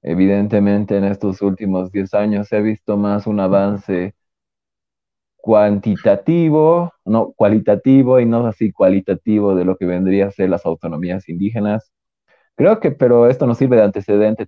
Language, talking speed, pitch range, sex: Spanish, 150 wpm, 95-110 Hz, male